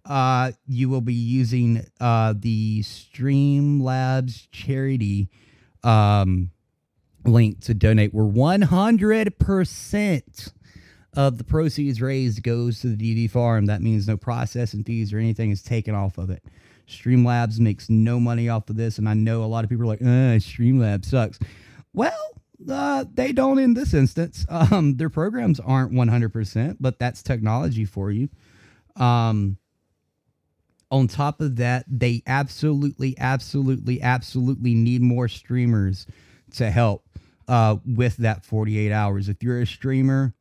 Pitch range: 110-135 Hz